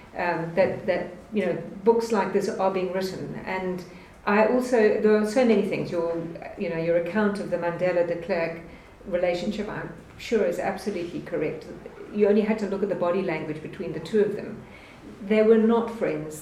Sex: female